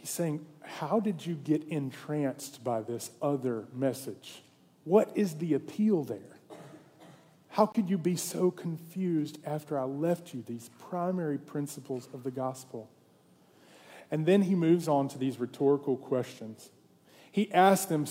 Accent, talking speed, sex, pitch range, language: American, 145 wpm, male, 145-195 Hz, English